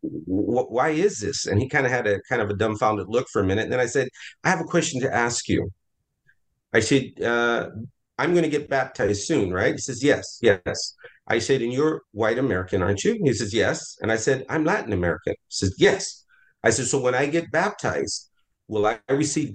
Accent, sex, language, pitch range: American, male, English, 105-140 Hz